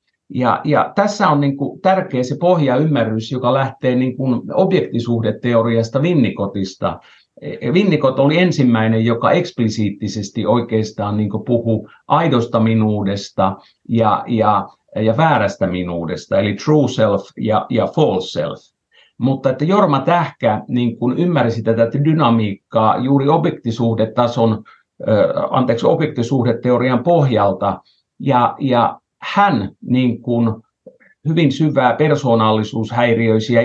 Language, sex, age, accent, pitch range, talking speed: Finnish, male, 50-69, native, 110-140 Hz, 105 wpm